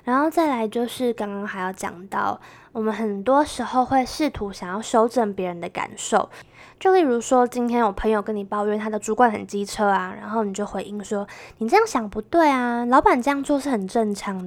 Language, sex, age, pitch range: Chinese, female, 20-39, 205-250 Hz